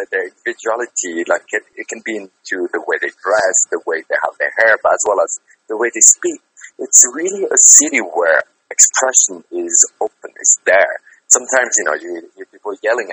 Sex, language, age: male, English, 30-49